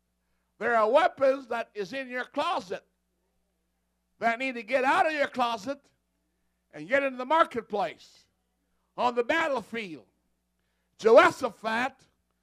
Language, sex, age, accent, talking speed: English, male, 60-79, American, 120 wpm